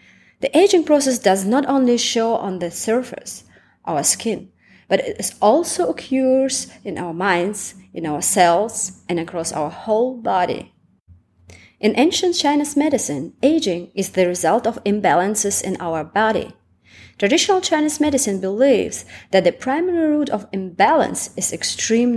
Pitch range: 165-260 Hz